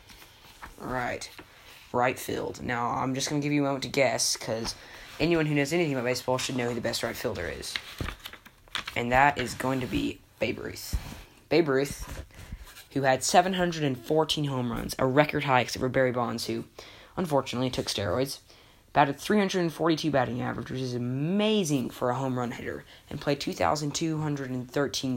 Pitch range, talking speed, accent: 115-150 Hz, 165 wpm, American